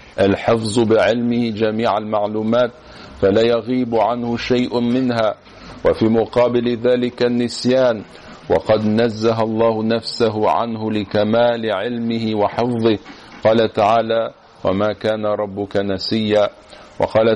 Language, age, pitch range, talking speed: French, 50-69, 110-120 Hz, 95 wpm